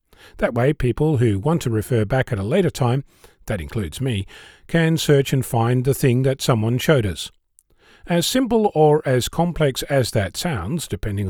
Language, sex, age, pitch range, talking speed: English, male, 40-59, 115-150 Hz, 180 wpm